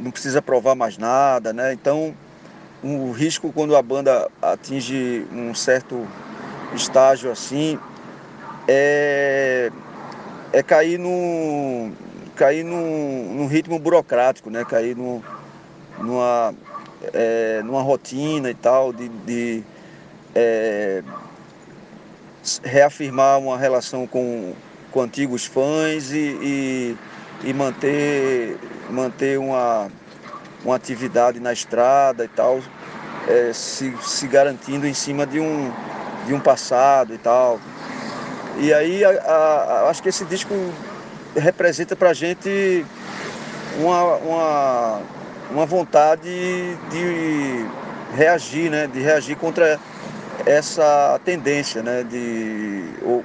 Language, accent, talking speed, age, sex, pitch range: Portuguese, Brazilian, 105 wpm, 40-59, male, 125-155 Hz